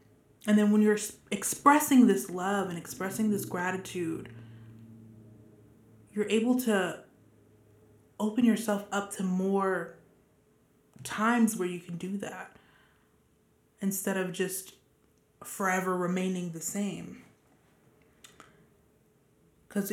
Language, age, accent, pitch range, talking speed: English, 20-39, American, 170-210 Hz, 100 wpm